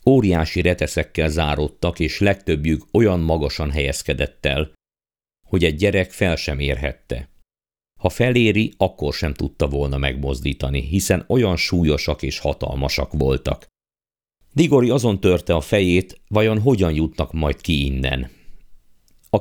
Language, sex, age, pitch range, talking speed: Hungarian, male, 50-69, 70-95 Hz, 125 wpm